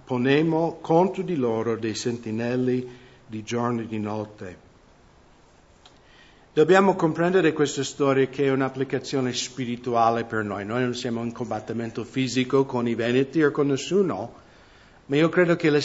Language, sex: English, male